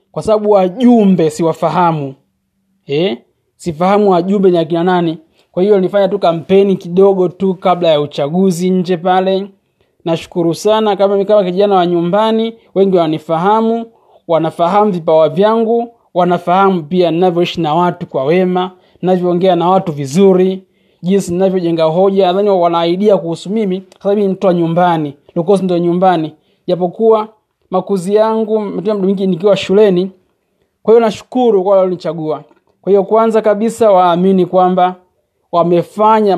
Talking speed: 125 wpm